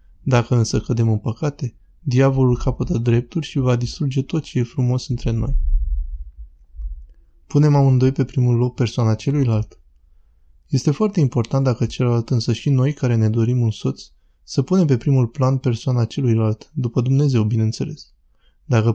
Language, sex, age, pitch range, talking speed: Romanian, male, 20-39, 110-135 Hz, 150 wpm